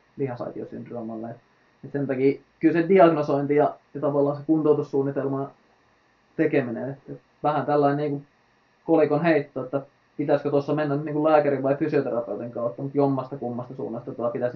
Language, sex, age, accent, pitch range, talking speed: Finnish, male, 20-39, native, 125-145 Hz, 135 wpm